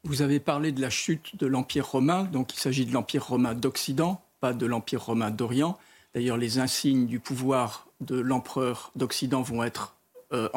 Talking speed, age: 180 wpm, 50-69